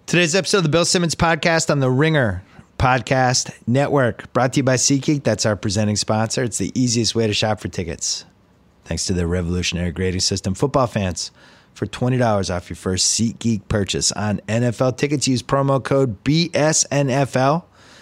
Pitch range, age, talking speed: 95-130 Hz, 30-49, 170 wpm